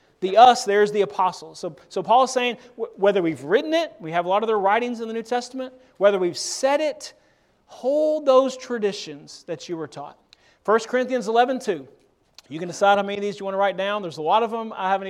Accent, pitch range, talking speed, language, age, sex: American, 180-240 Hz, 240 wpm, English, 40-59, male